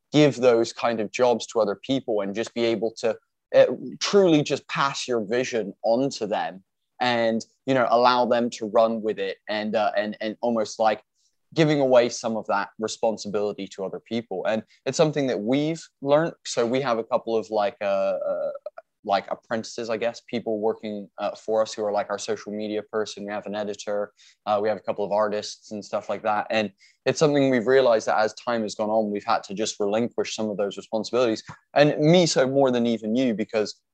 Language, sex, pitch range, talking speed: English, male, 105-155 Hz, 210 wpm